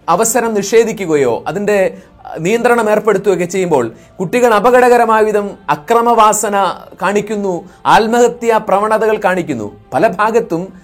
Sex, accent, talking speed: male, native, 90 wpm